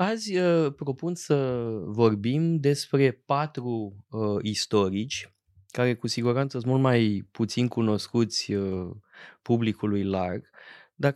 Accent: native